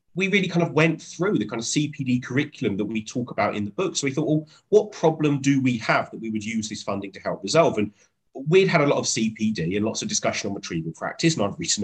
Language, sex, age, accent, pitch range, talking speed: English, male, 30-49, British, 110-160 Hz, 270 wpm